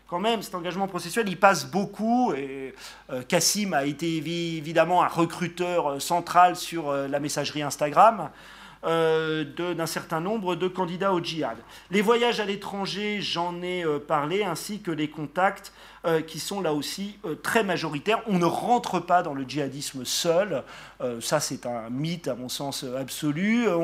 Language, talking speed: French, 175 wpm